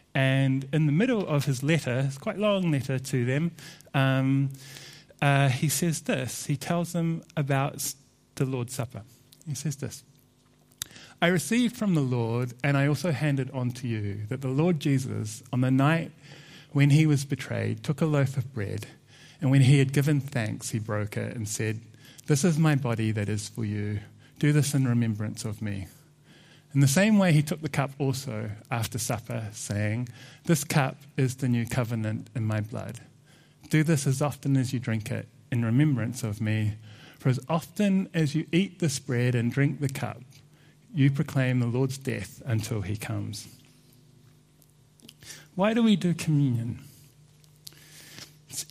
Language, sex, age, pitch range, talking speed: English, male, 30-49, 120-150 Hz, 175 wpm